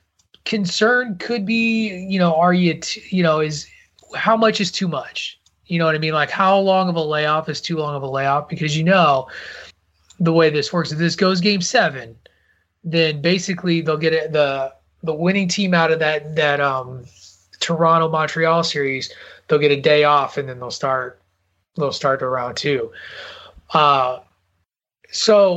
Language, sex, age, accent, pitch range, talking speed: English, male, 30-49, American, 135-175 Hz, 180 wpm